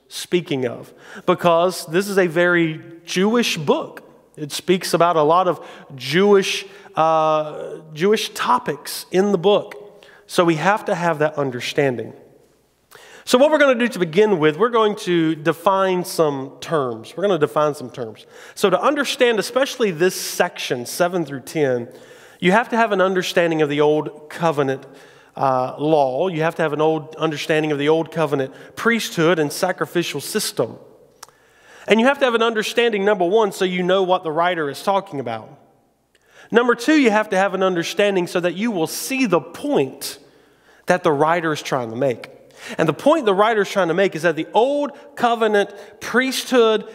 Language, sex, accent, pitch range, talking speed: English, male, American, 160-215 Hz, 180 wpm